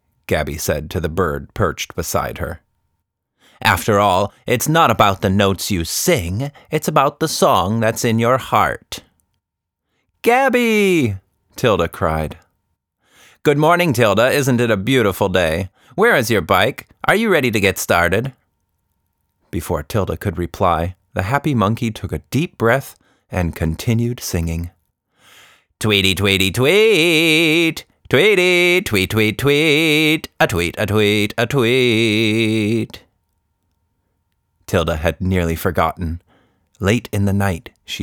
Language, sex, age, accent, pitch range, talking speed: English, male, 30-49, American, 90-125 Hz, 125 wpm